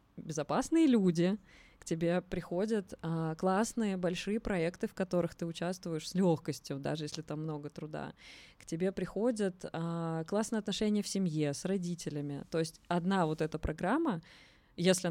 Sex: female